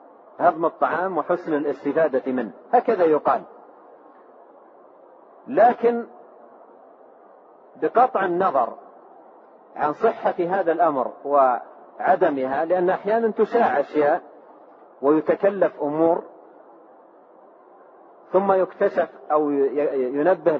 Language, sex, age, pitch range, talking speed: Arabic, male, 40-59, 160-210 Hz, 70 wpm